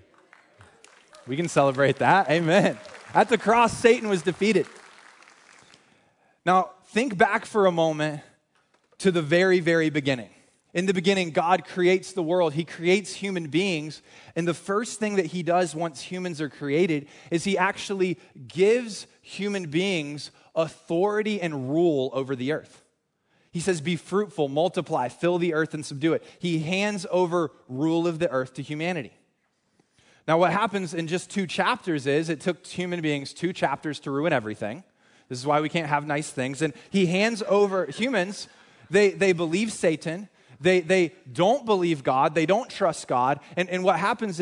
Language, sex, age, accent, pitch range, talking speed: English, male, 20-39, American, 145-185 Hz, 165 wpm